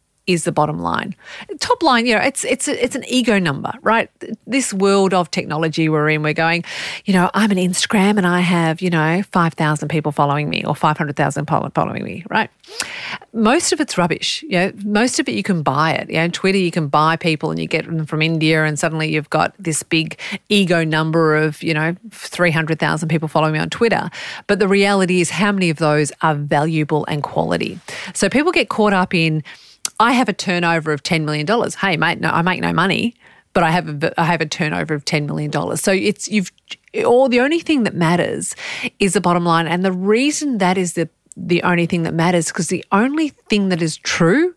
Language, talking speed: English, 225 wpm